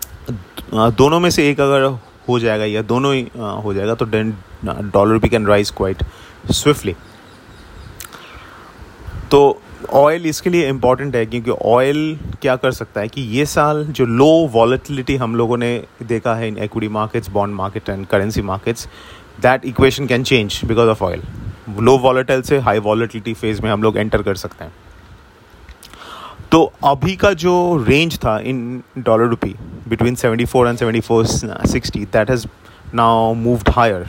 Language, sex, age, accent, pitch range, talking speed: English, male, 30-49, Indian, 105-130 Hz, 120 wpm